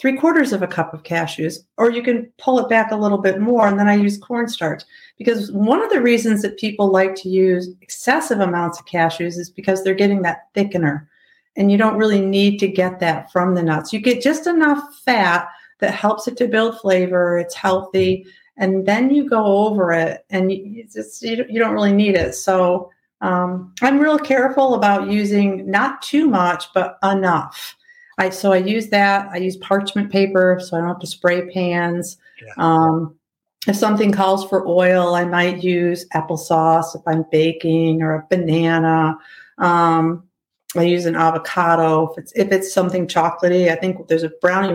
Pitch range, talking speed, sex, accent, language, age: 175-220 Hz, 185 wpm, female, American, English, 40-59